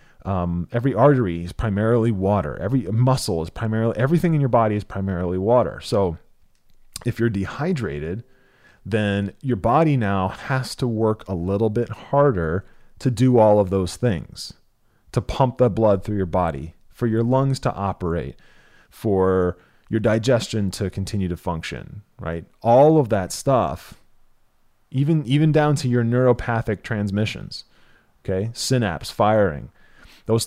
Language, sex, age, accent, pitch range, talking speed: English, male, 30-49, American, 95-125 Hz, 145 wpm